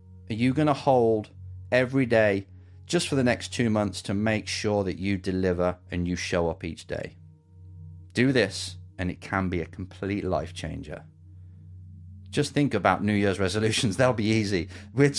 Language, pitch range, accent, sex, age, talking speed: English, 95-130 Hz, British, male, 30-49, 180 wpm